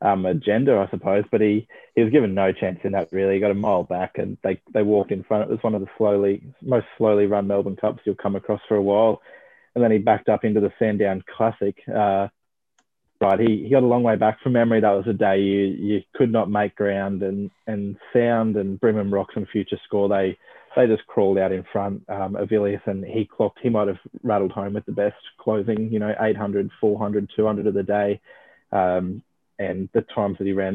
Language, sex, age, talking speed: English, male, 20-39, 230 wpm